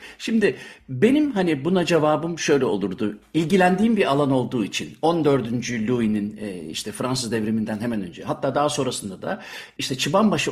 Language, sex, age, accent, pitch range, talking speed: Turkish, male, 60-79, native, 120-165 Hz, 150 wpm